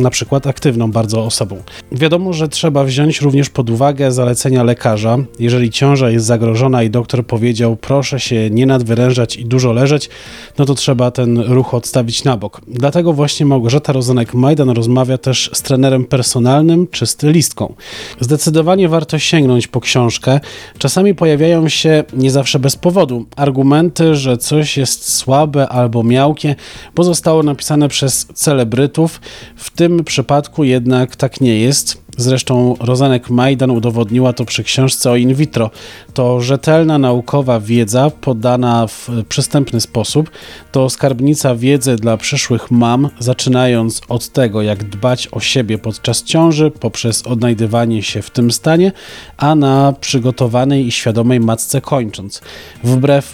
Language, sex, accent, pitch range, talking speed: Polish, male, native, 120-140 Hz, 140 wpm